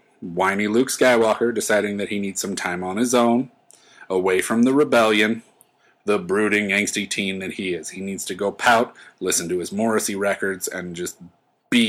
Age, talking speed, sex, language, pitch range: 30-49, 180 wpm, male, English, 90-110 Hz